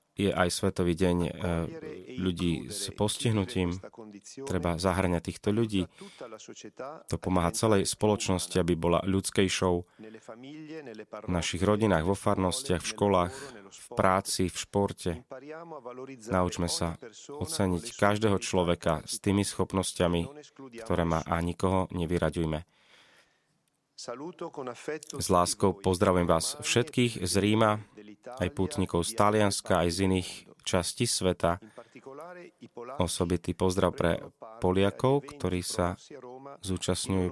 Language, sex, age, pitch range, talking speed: Slovak, male, 30-49, 90-115 Hz, 105 wpm